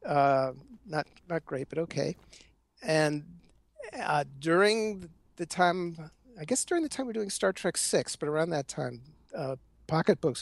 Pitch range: 135-170 Hz